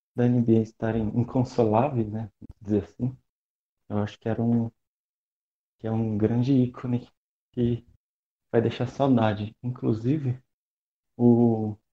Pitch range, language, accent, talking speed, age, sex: 110-130 Hz, Portuguese, Brazilian, 120 wpm, 20-39, male